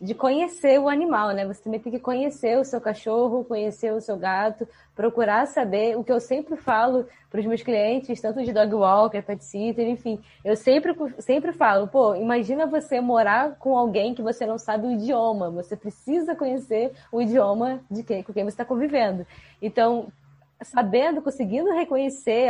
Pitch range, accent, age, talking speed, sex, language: 215-260 Hz, Brazilian, 10-29, 180 wpm, female, Portuguese